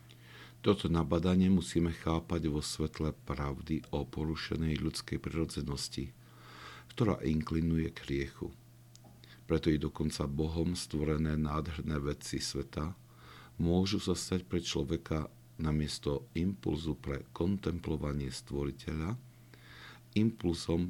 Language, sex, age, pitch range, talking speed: Slovak, male, 50-69, 75-95 Hz, 95 wpm